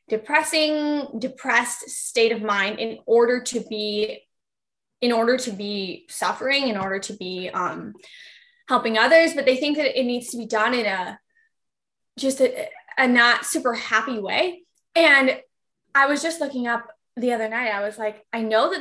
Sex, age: female, 10-29